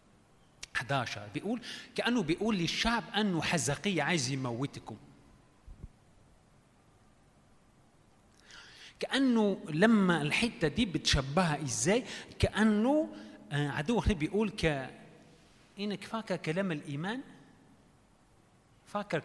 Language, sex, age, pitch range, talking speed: Arabic, male, 30-49, 135-185 Hz, 70 wpm